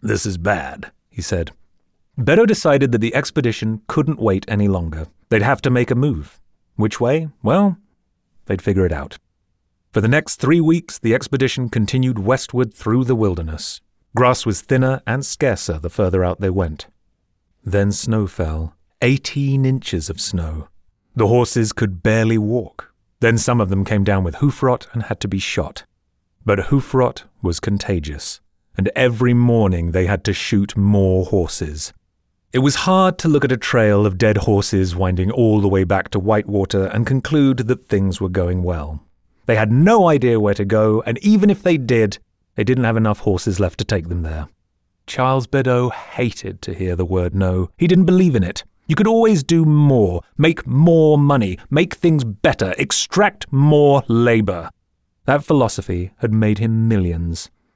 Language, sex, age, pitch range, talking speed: English, male, 30-49, 95-130 Hz, 175 wpm